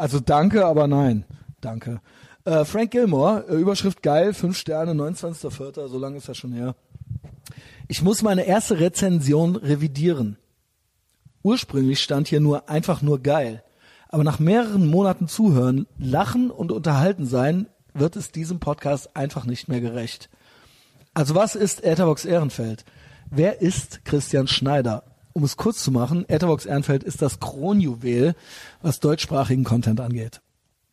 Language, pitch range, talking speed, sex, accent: German, 125-170 Hz, 140 wpm, male, German